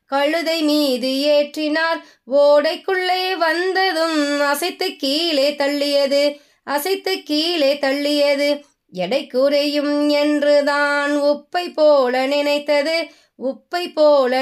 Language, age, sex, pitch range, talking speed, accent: Tamil, 20-39, female, 285-315 Hz, 80 wpm, native